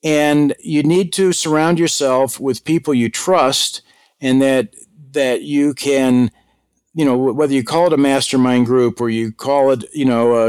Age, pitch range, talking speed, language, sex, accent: 50-69, 130-170 Hz, 175 wpm, English, male, American